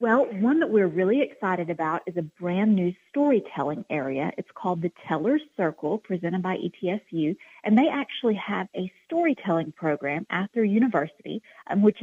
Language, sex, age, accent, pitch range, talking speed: English, female, 30-49, American, 165-205 Hz, 160 wpm